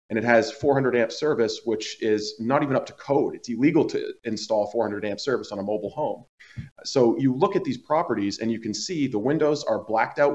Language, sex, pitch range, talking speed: English, male, 105-135 Hz, 225 wpm